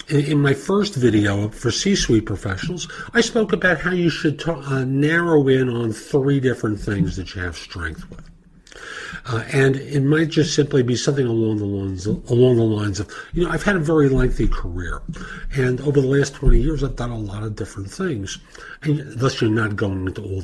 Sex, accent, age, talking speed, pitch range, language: male, American, 50-69, 205 wpm, 110-165 Hz, English